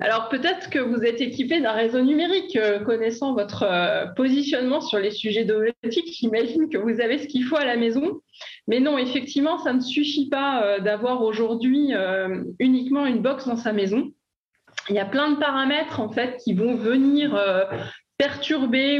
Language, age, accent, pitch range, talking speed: French, 20-39, French, 205-270 Hz, 175 wpm